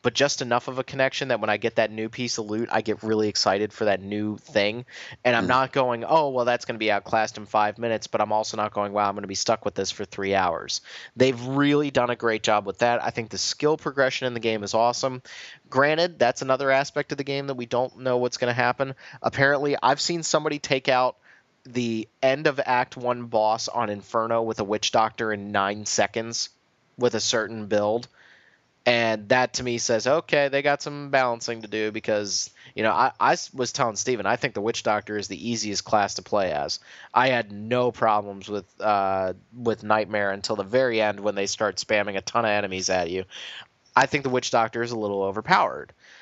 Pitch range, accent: 105-130 Hz, American